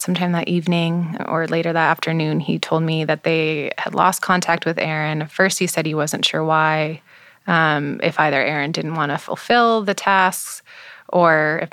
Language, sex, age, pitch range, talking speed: English, female, 20-39, 155-175 Hz, 185 wpm